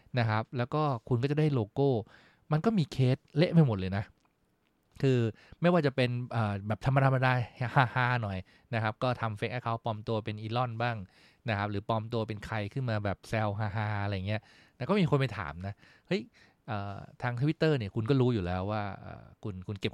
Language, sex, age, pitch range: English, male, 20-39, 100-125 Hz